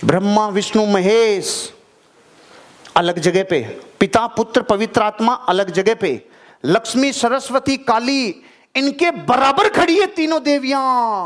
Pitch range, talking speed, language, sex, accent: 210-305 Hz, 115 wpm, Hindi, male, native